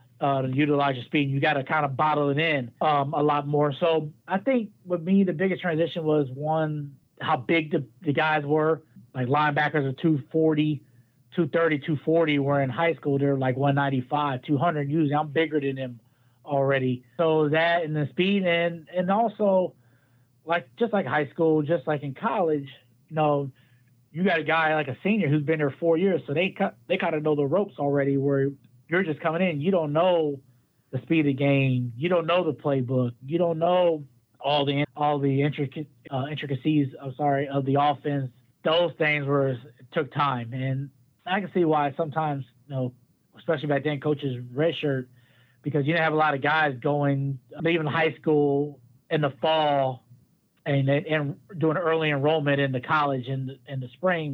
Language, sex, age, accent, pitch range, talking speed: English, male, 30-49, American, 135-160 Hz, 190 wpm